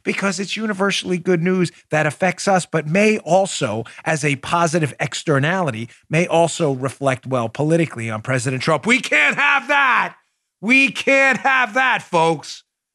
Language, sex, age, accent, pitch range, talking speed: English, male, 40-59, American, 155-215 Hz, 150 wpm